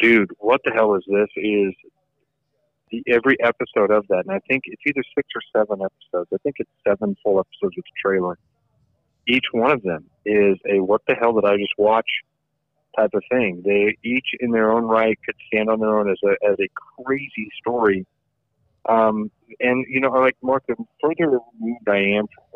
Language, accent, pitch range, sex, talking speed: English, American, 105-135 Hz, male, 200 wpm